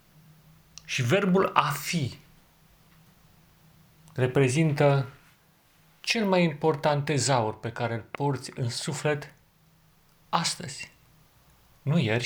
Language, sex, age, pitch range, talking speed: Romanian, male, 40-59, 120-155 Hz, 90 wpm